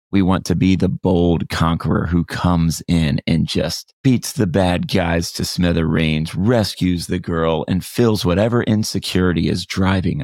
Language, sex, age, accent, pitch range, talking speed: English, male, 30-49, American, 85-110 Hz, 160 wpm